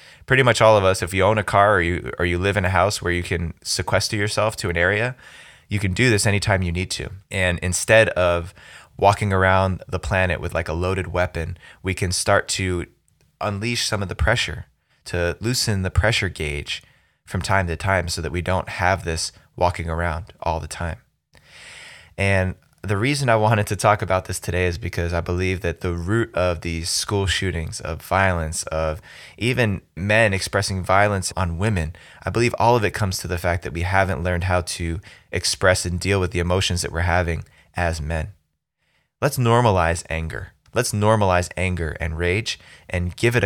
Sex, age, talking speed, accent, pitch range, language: male, 20-39, 195 wpm, American, 85-105 Hz, English